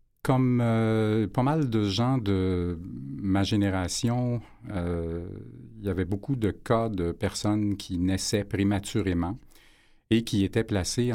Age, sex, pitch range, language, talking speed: 50-69, male, 90-105 Hz, French, 135 wpm